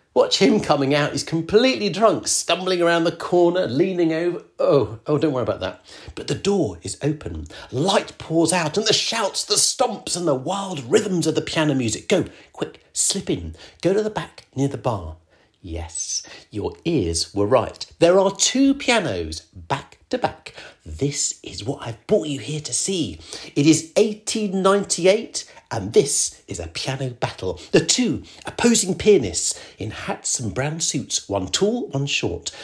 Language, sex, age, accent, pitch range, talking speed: English, male, 50-69, British, 130-210 Hz, 175 wpm